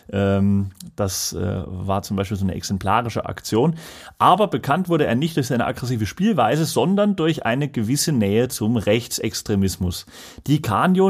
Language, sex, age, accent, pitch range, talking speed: German, male, 30-49, German, 105-140 Hz, 140 wpm